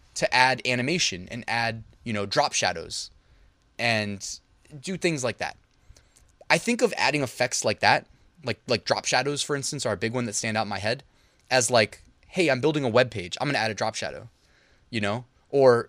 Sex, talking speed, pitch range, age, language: male, 210 wpm, 115-160 Hz, 20-39, English